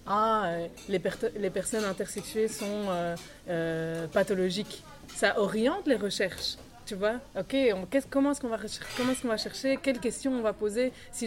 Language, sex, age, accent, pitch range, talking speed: French, female, 20-39, French, 200-245 Hz, 185 wpm